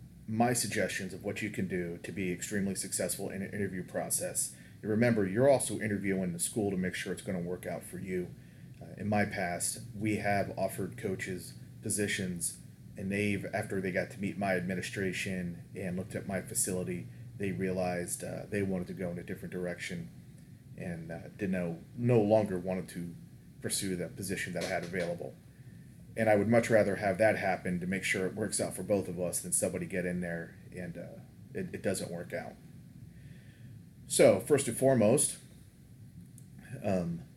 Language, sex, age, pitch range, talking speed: English, male, 30-49, 95-120 Hz, 185 wpm